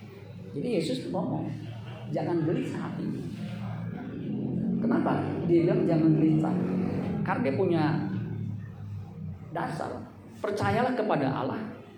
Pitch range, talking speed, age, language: 135-170 Hz, 95 wpm, 40-59, Indonesian